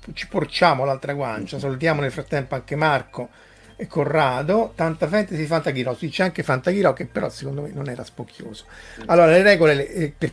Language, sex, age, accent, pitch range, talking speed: Italian, male, 50-69, native, 130-165 Hz, 170 wpm